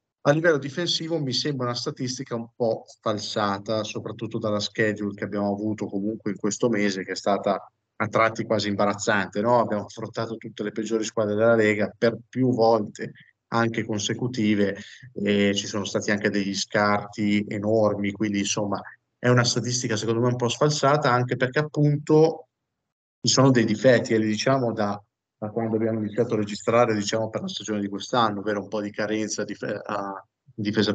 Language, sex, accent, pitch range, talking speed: Italian, male, native, 105-115 Hz, 175 wpm